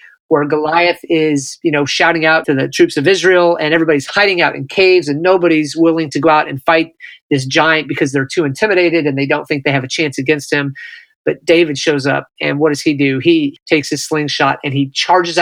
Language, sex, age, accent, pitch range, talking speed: English, male, 30-49, American, 145-175 Hz, 225 wpm